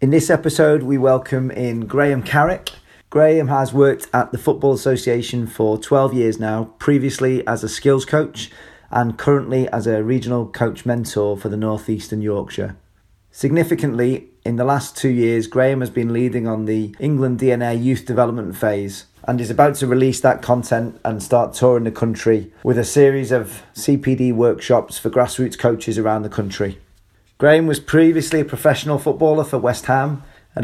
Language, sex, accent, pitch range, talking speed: English, male, British, 115-140 Hz, 170 wpm